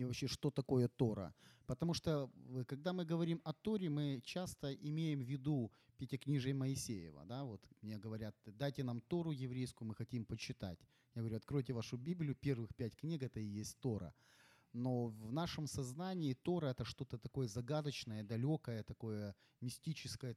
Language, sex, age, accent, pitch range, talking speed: Ukrainian, male, 30-49, native, 115-150 Hz, 155 wpm